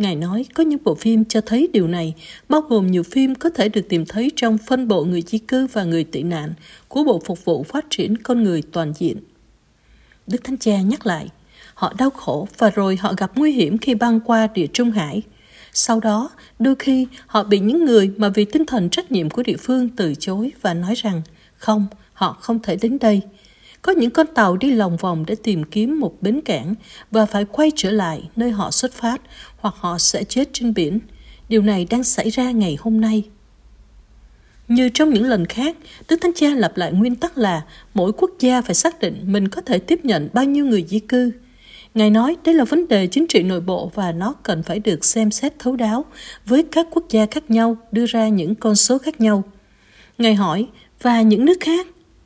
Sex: female